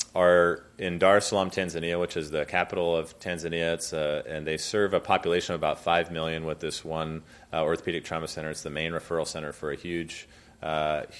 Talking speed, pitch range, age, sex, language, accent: 205 wpm, 80-100 Hz, 30-49, male, English, American